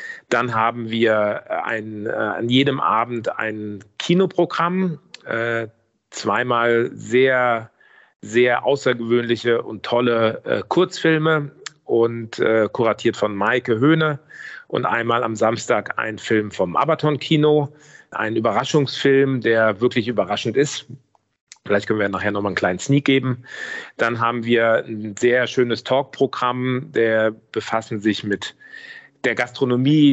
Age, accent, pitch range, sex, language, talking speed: 40-59, German, 115-140 Hz, male, German, 125 wpm